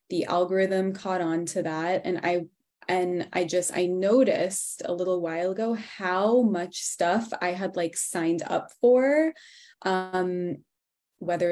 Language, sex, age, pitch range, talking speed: English, female, 20-39, 180-215 Hz, 145 wpm